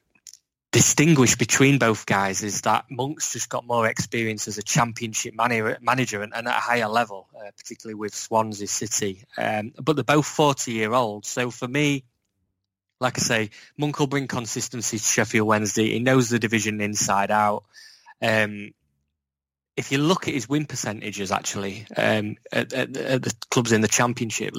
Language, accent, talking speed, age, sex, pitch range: English, British, 165 wpm, 20-39, male, 105-125 Hz